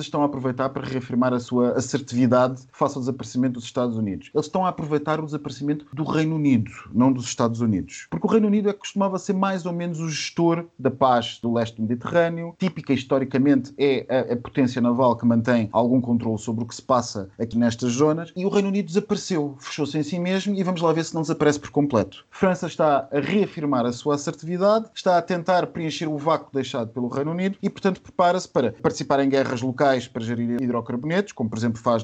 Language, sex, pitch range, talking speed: Portuguese, male, 125-170 Hz, 215 wpm